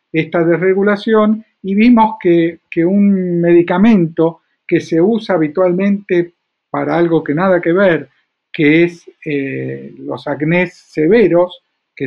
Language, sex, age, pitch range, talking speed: Spanish, male, 50-69, 155-190 Hz, 125 wpm